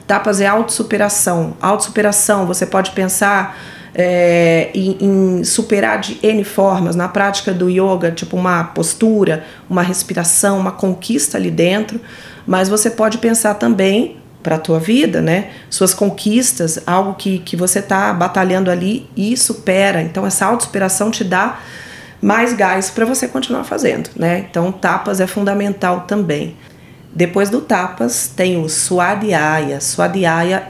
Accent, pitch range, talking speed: Brazilian, 170-200 Hz, 140 wpm